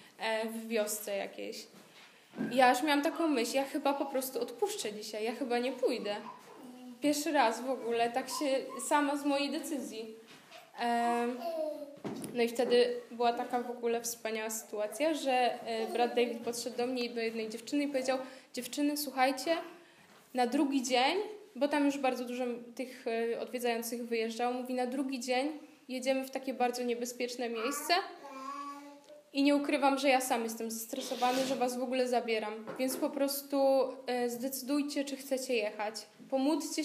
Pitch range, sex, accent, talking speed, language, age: 230-275 Hz, female, native, 150 wpm, Polish, 10-29